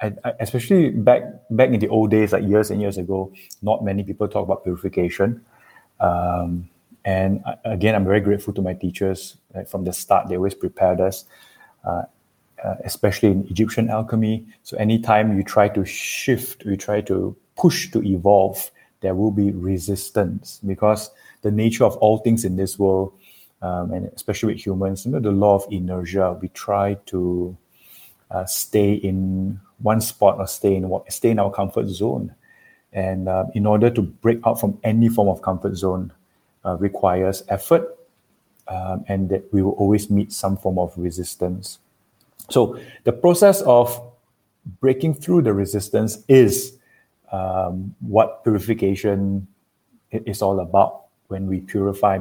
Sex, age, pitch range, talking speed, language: male, 20-39, 95-110 Hz, 160 wpm, English